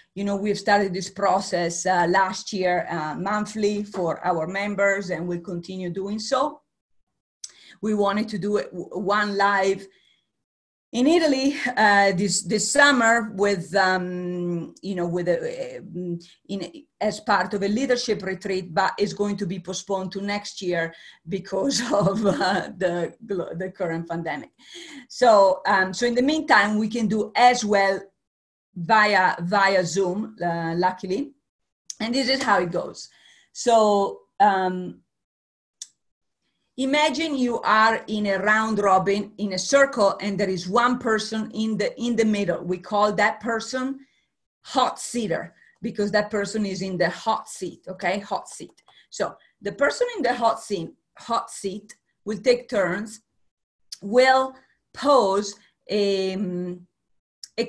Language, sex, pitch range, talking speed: English, female, 190-225 Hz, 150 wpm